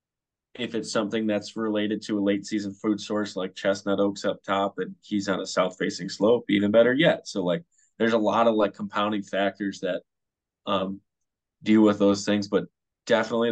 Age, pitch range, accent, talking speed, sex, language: 20-39, 95-105 Hz, American, 190 wpm, male, English